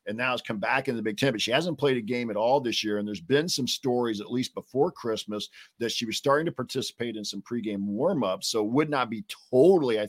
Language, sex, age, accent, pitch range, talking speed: English, male, 50-69, American, 105-130 Hz, 270 wpm